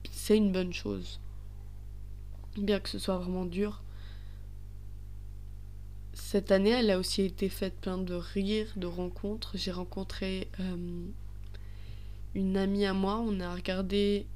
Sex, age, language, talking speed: female, 20-39, French, 135 wpm